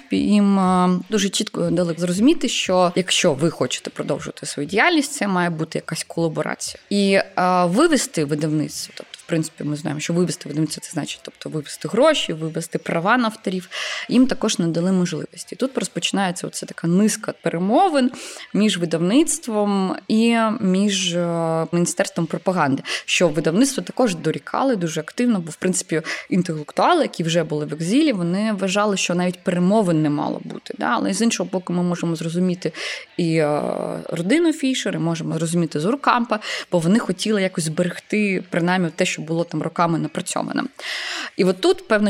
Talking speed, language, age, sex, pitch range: 150 wpm, Ukrainian, 20-39, female, 165-215 Hz